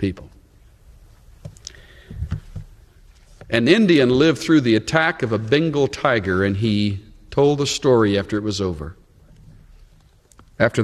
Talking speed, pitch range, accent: 115 wpm, 95-125 Hz, American